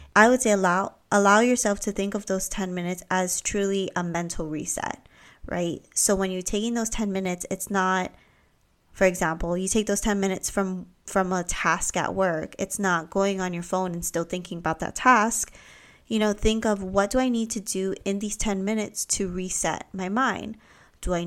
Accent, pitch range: American, 185-215 Hz